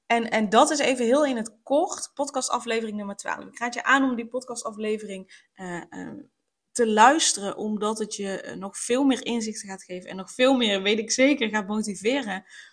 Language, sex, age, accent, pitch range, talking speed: Dutch, female, 20-39, Dutch, 195-245 Hz, 195 wpm